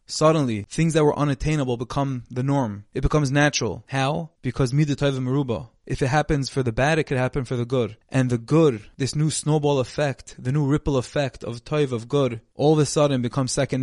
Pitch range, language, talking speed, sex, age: 120-140 Hz, English, 215 wpm, male, 20-39